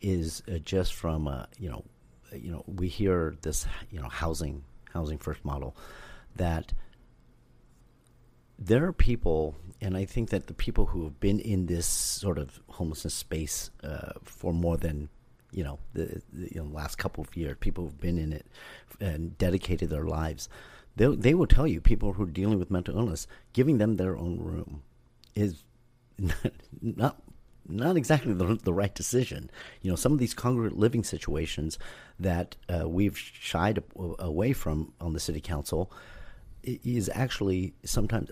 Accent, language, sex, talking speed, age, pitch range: American, English, male, 170 wpm, 40-59, 80-100 Hz